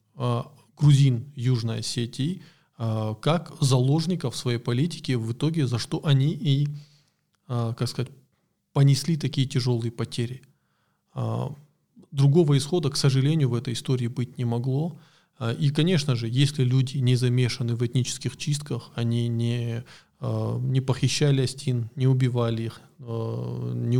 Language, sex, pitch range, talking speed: Russian, male, 120-140 Hz, 120 wpm